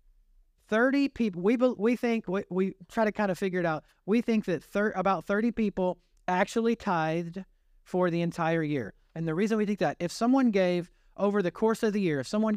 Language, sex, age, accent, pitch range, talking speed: English, male, 40-59, American, 155-205 Hz, 210 wpm